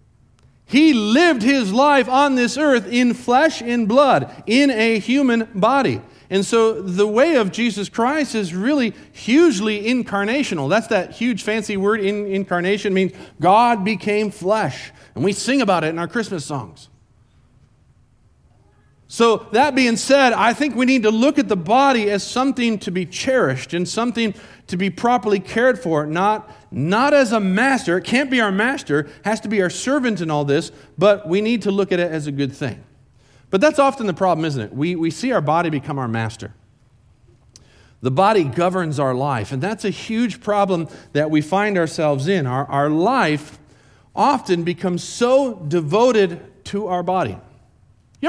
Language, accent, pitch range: English, American, 150-235 Hz